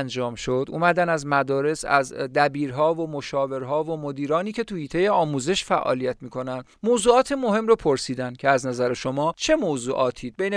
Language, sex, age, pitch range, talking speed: Persian, male, 40-59, 135-190 Hz, 155 wpm